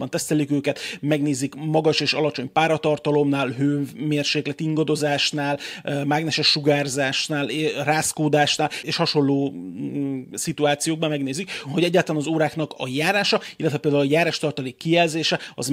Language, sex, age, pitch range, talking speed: Hungarian, male, 30-49, 145-160 Hz, 105 wpm